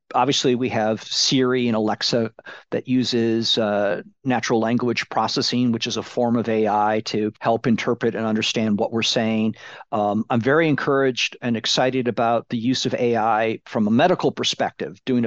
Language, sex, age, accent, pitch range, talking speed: English, male, 50-69, American, 115-140 Hz, 165 wpm